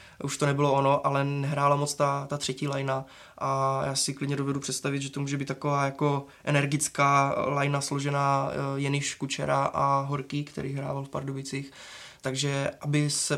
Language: Czech